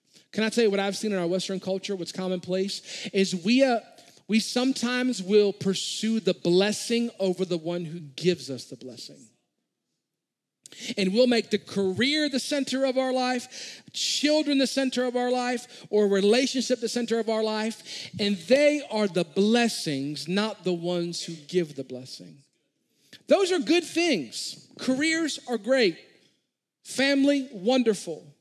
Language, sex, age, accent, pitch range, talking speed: English, male, 40-59, American, 165-230 Hz, 155 wpm